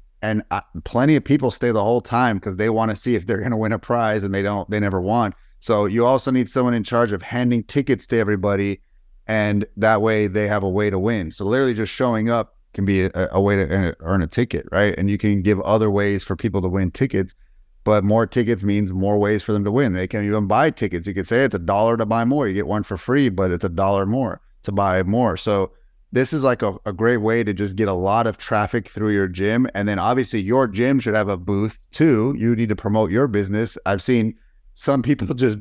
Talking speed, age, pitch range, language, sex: 250 wpm, 30-49, 100-120 Hz, English, male